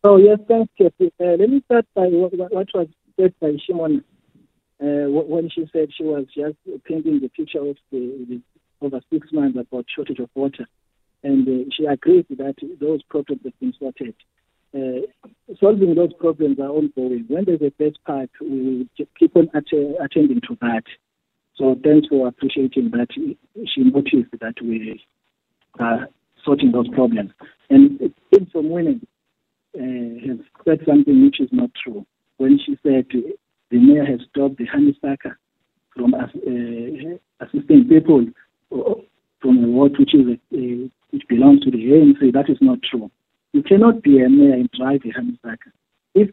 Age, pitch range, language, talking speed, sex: 50-69, 130-200 Hz, English, 170 wpm, male